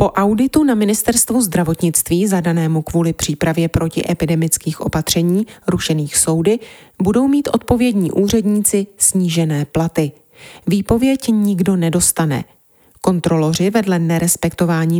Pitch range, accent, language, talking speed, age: 165-210 Hz, native, Czech, 95 wpm, 30-49